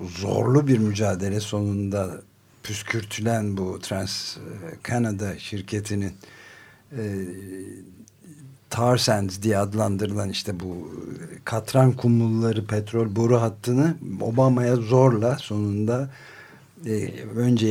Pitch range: 100-120 Hz